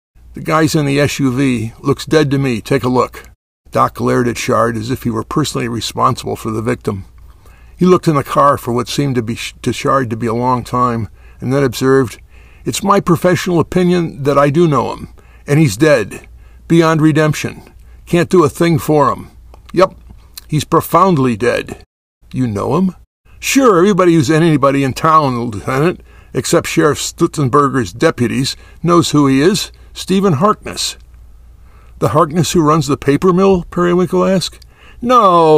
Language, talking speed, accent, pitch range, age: English, 165 wpm, American, 125-175 Hz, 60-79